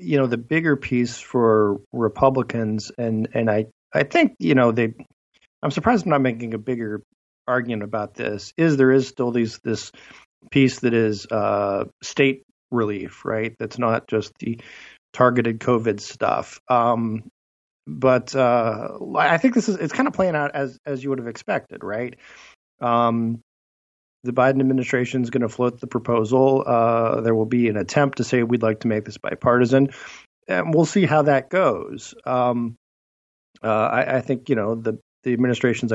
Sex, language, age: male, English, 40-59